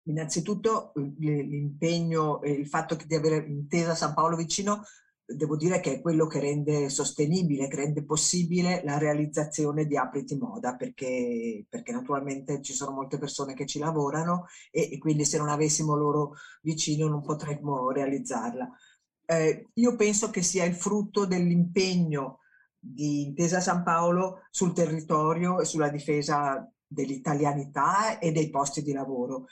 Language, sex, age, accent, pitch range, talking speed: Italian, female, 50-69, native, 145-180 Hz, 145 wpm